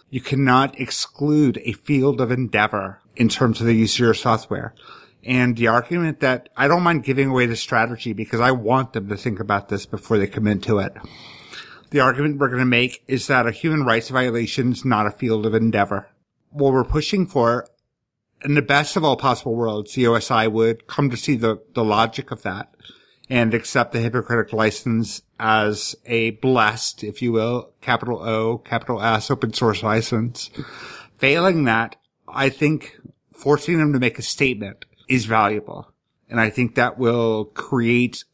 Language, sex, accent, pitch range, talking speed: English, male, American, 110-135 Hz, 180 wpm